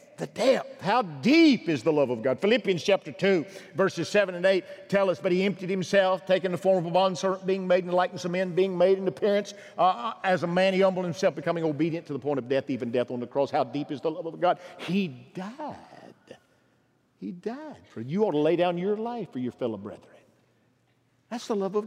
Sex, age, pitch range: male, 50-69, 125-195 Hz